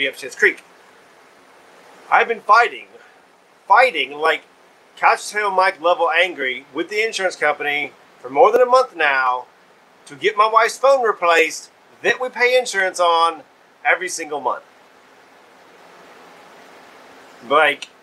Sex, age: male, 40-59